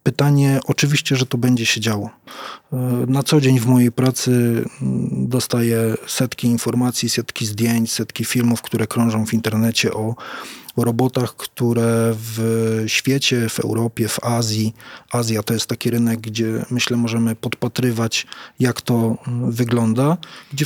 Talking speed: 135 wpm